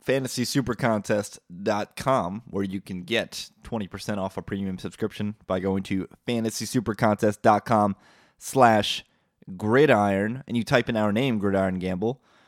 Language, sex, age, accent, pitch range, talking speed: English, male, 20-39, American, 100-130 Hz, 140 wpm